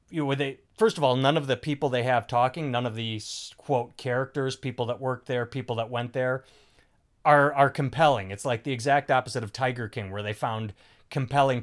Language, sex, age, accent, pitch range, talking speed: English, male, 30-49, American, 120-150 Hz, 200 wpm